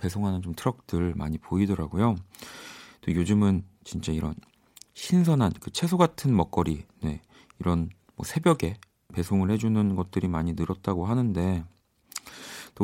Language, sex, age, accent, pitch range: Korean, male, 40-59, native, 85-110 Hz